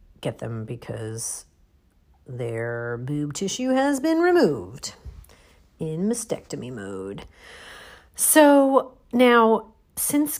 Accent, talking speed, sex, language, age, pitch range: American, 85 wpm, female, English, 40-59, 125-180 Hz